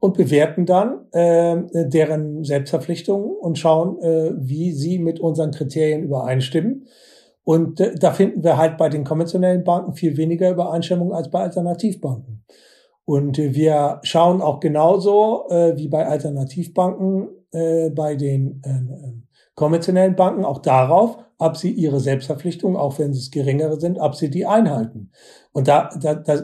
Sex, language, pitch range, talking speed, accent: male, German, 150-185 Hz, 155 wpm, German